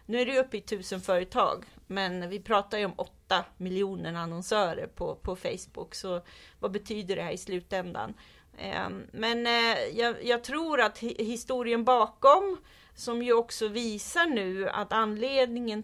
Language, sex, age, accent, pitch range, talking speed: Swedish, female, 30-49, native, 185-230 Hz, 150 wpm